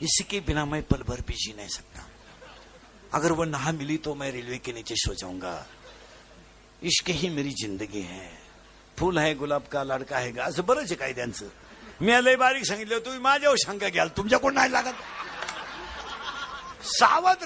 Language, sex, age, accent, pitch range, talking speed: Marathi, male, 60-79, native, 150-240 Hz, 170 wpm